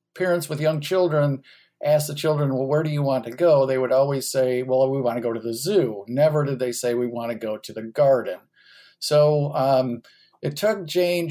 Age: 50-69